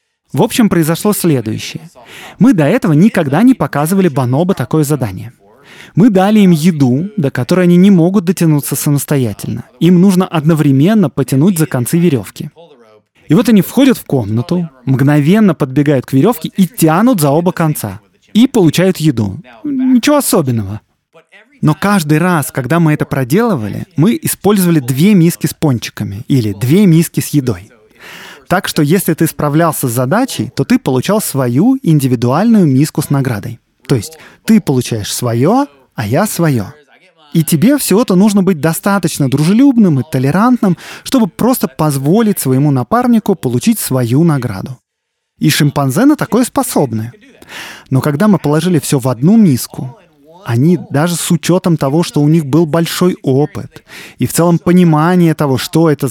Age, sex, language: 20-39, male, Russian